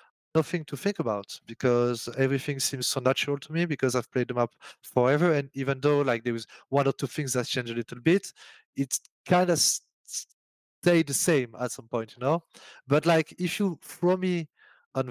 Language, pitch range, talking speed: English, 120-150 Hz, 200 wpm